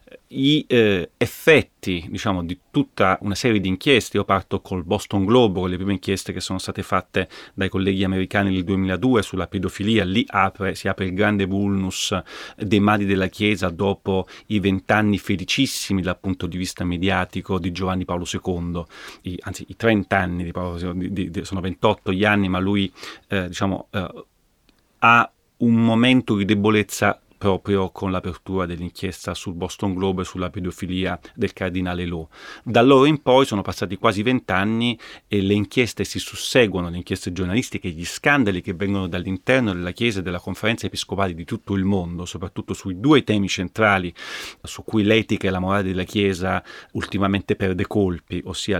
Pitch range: 90-105 Hz